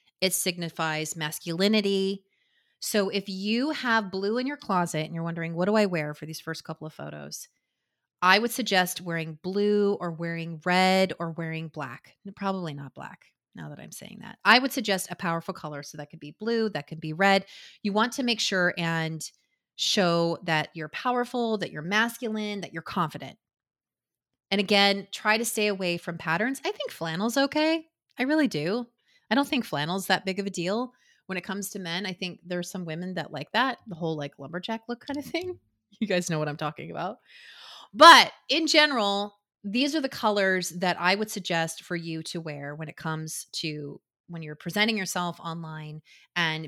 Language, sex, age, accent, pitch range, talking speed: English, female, 30-49, American, 160-210 Hz, 195 wpm